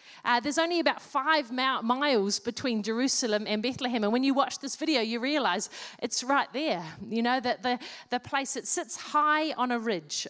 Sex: female